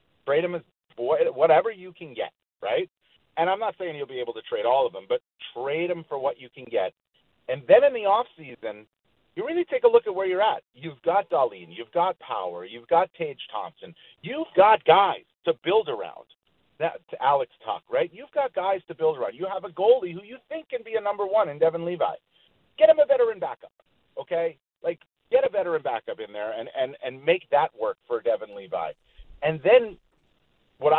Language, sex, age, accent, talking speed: English, male, 40-59, American, 210 wpm